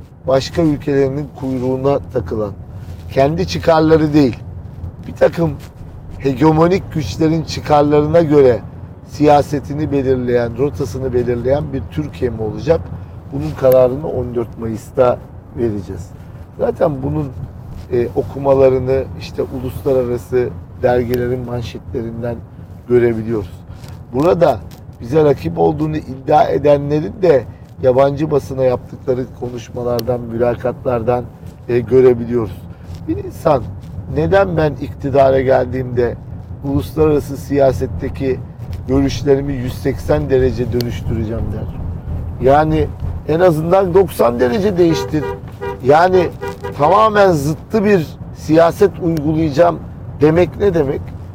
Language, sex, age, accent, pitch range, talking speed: Turkish, male, 40-59, native, 115-145 Hz, 90 wpm